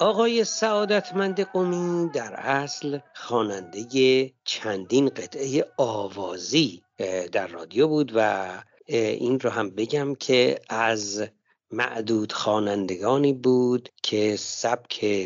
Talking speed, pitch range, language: 95 wpm, 110-155 Hz, Persian